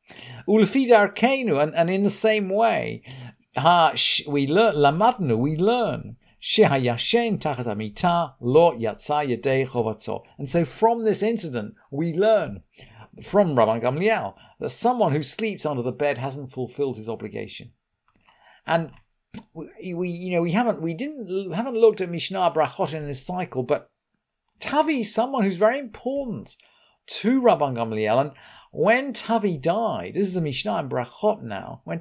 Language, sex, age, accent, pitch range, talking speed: English, male, 50-69, British, 140-215 Hz, 150 wpm